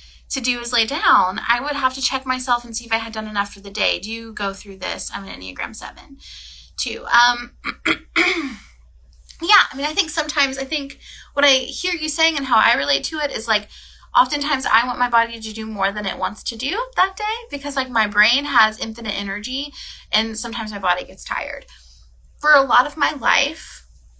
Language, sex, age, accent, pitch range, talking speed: English, female, 20-39, American, 215-280 Hz, 215 wpm